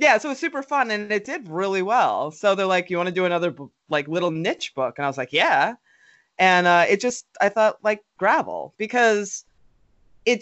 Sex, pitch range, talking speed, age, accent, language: female, 155-210 Hz, 220 wpm, 30-49, American, English